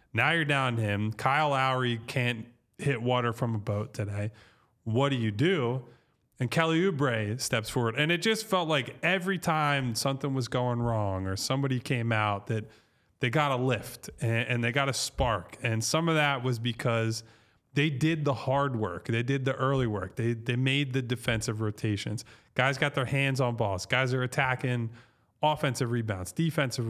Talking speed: 185 wpm